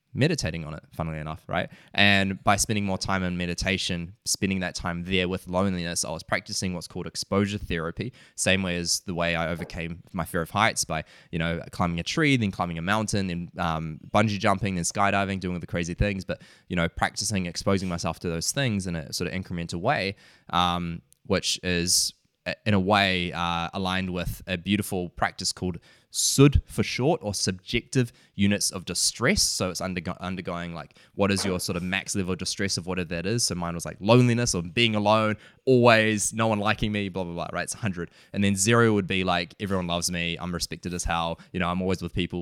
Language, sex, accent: English, male, Australian